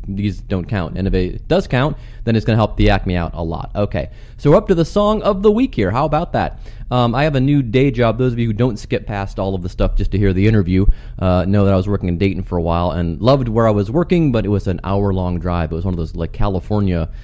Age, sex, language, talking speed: 30-49, male, English, 300 wpm